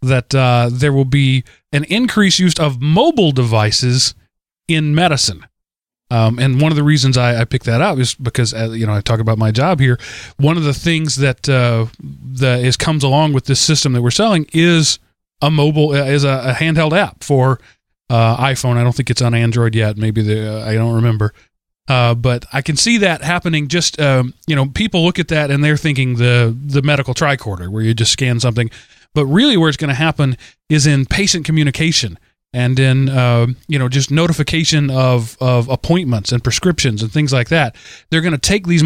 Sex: male